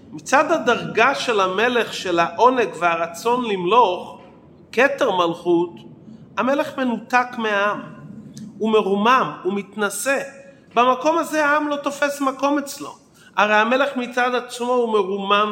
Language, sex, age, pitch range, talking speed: Hebrew, male, 40-59, 190-260 Hz, 115 wpm